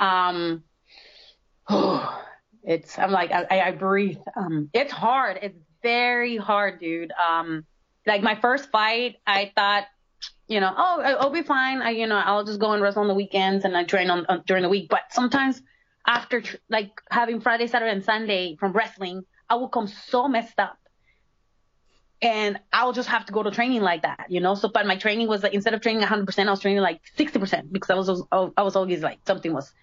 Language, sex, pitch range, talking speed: English, female, 195-250 Hz, 205 wpm